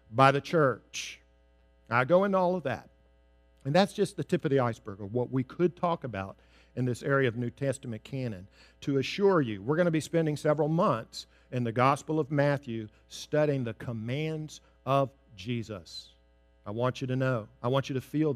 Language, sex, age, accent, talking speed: English, male, 50-69, American, 195 wpm